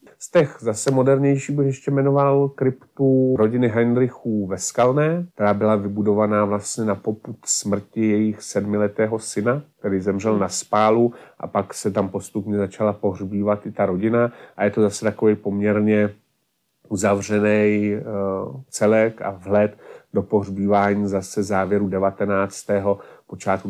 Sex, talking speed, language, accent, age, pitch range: male, 130 wpm, Czech, native, 30-49, 100-110 Hz